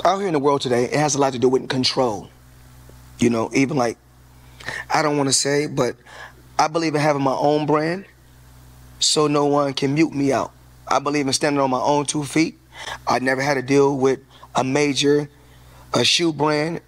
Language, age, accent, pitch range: English, 20-39, American, 120-155 Hz